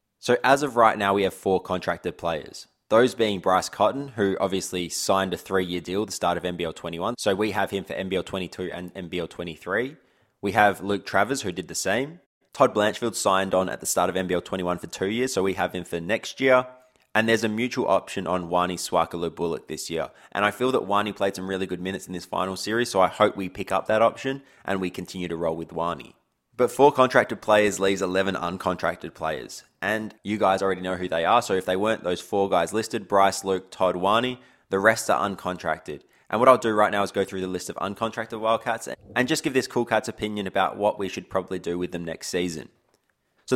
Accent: Australian